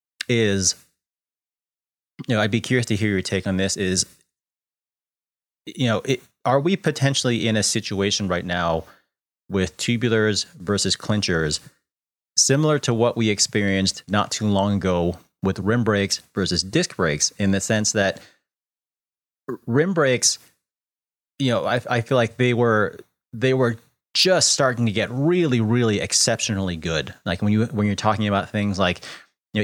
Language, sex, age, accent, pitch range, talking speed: English, male, 30-49, American, 95-115 Hz, 155 wpm